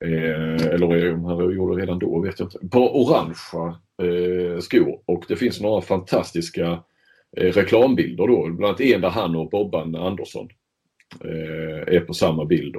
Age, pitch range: 40-59, 85-120 Hz